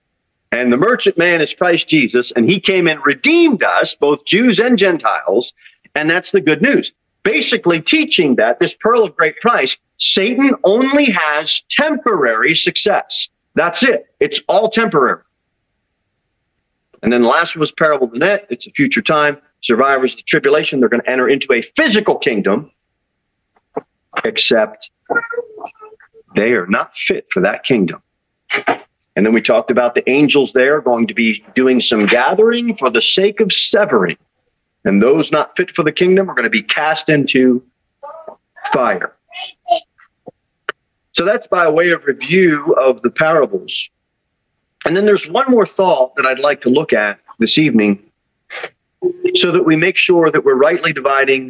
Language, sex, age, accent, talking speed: English, male, 40-59, American, 160 wpm